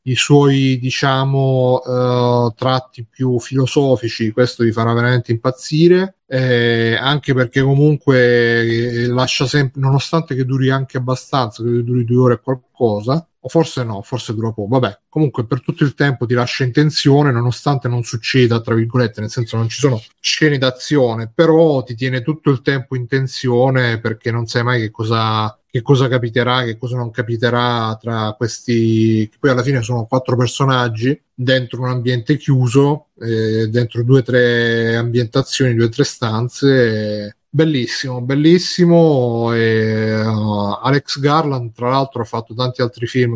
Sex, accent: male, native